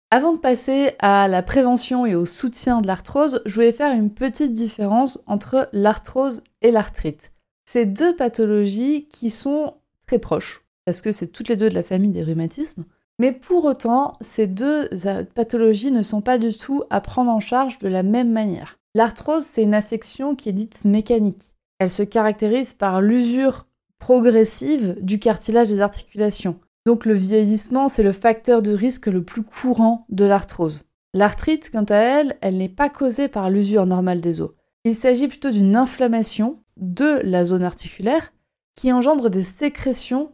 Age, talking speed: 20-39, 170 wpm